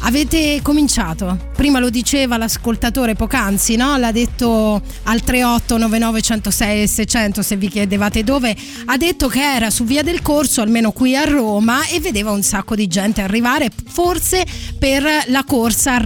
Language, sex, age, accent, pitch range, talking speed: Italian, female, 20-39, native, 210-275 Hz, 155 wpm